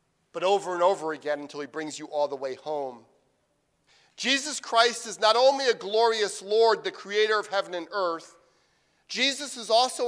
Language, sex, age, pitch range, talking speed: English, male, 50-69, 165-235 Hz, 180 wpm